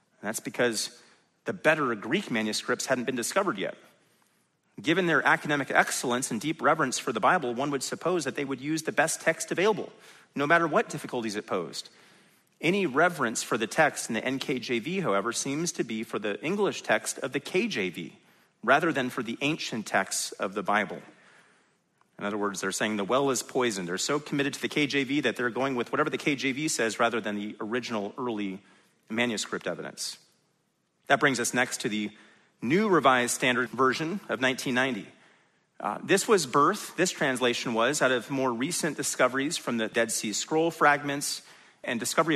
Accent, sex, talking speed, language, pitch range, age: American, male, 180 wpm, English, 120-150 Hz, 30-49